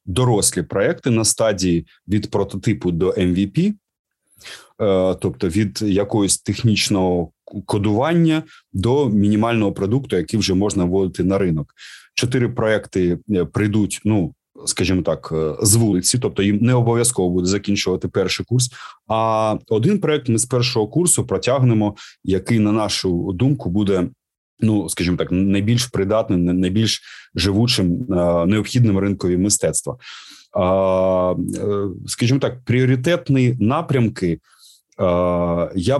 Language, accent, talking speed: Ukrainian, native, 110 wpm